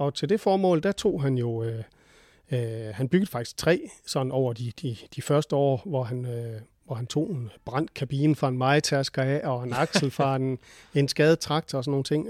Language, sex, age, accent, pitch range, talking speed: Danish, male, 40-59, native, 130-155 Hz, 225 wpm